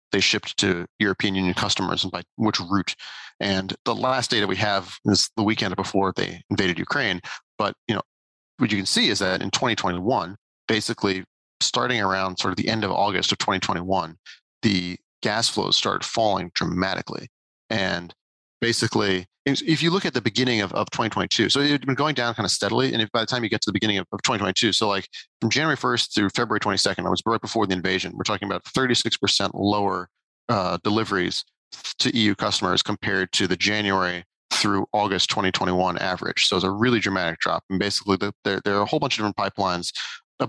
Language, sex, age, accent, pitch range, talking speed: English, male, 40-59, American, 95-110 Hz, 200 wpm